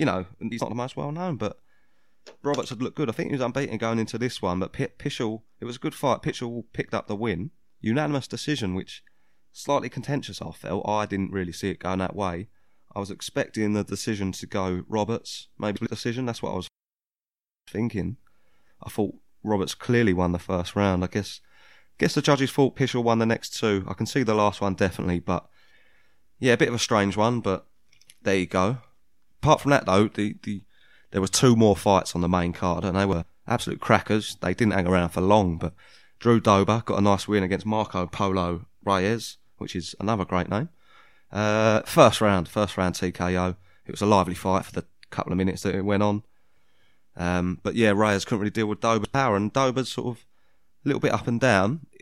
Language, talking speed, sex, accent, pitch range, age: English, 210 wpm, male, British, 95-115 Hz, 20-39